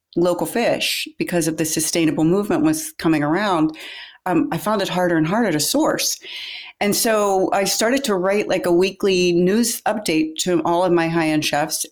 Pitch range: 165-230 Hz